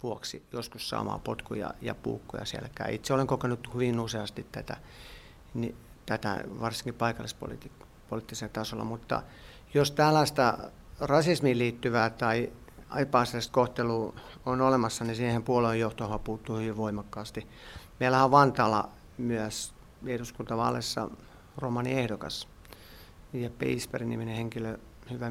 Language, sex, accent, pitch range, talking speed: Finnish, male, native, 110-125 Hz, 110 wpm